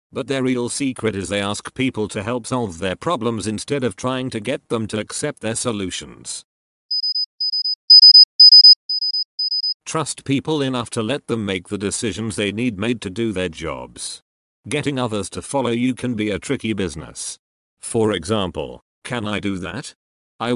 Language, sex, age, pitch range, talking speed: English, male, 50-69, 100-120 Hz, 165 wpm